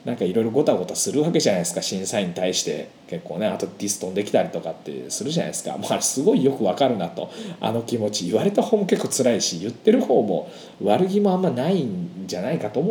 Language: Japanese